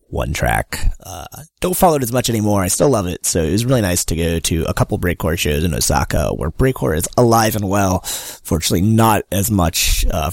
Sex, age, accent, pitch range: male, 20-39, American, 85-120 Hz